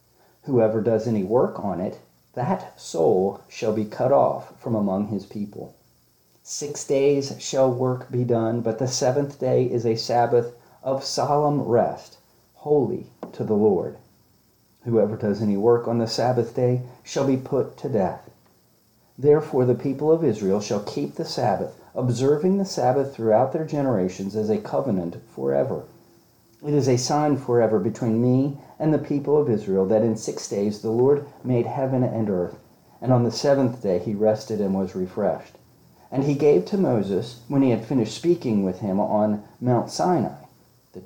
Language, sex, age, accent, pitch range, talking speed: English, male, 40-59, American, 105-140 Hz, 170 wpm